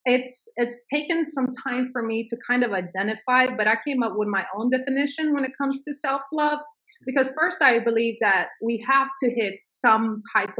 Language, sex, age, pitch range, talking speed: English, female, 30-49, 210-255 Hz, 200 wpm